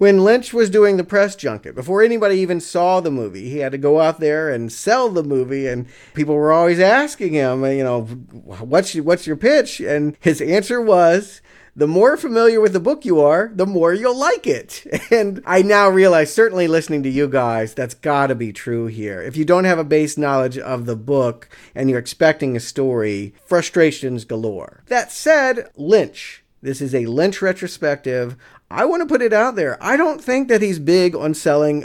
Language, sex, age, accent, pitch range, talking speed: English, male, 50-69, American, 135-185 Hz, 200 wpm